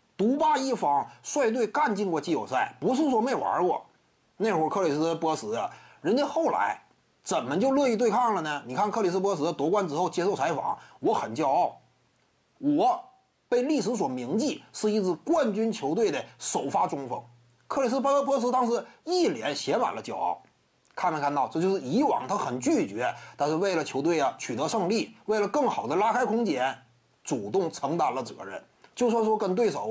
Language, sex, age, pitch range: Chinese, male, 30-49, 205-285 Hz